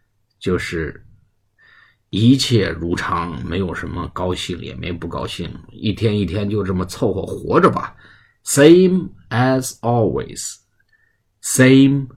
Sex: male